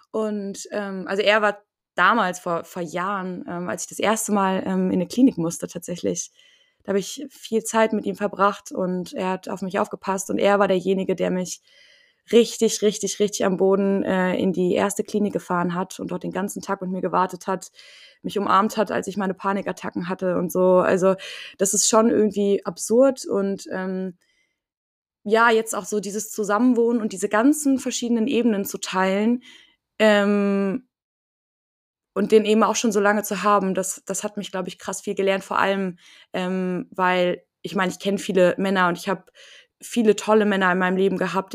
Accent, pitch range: German, 185-210 Hz